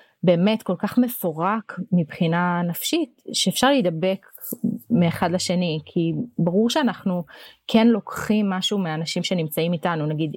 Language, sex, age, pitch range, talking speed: Hebrew, female, 20-39, 165-210 Hz, 115 wpm